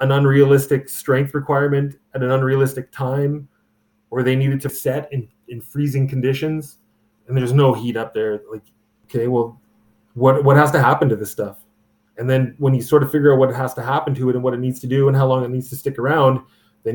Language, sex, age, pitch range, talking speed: English, male, 20-39, 110-140 Hz, 225 wpm